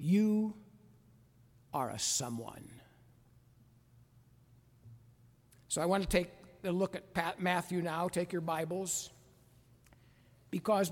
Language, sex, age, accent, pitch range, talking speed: English, male, 60-79, American, 125-205 Hz, 100 wpm